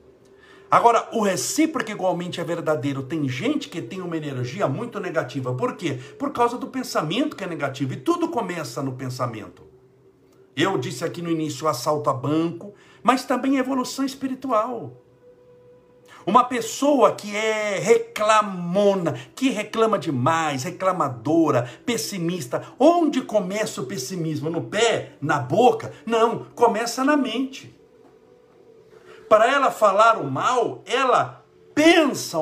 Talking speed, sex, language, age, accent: 130 wpm, male, Portuguese, 60-79, Brazilian